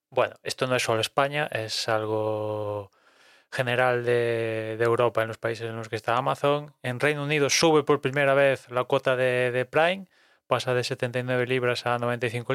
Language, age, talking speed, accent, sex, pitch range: Spanish, 20-39, 180 wpm, Spanish, male, 115-140 Hz